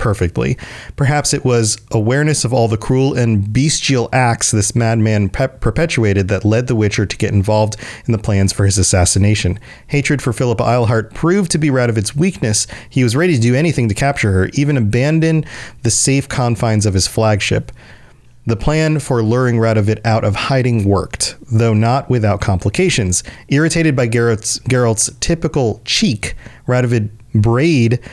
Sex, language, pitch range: male, English, 105-130 Hz